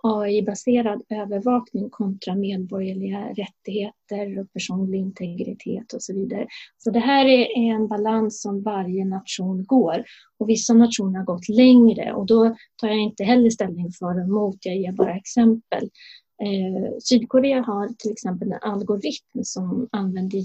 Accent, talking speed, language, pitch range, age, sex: native, 145 wpm, Swedish, 190-235 Hz, 30-49, female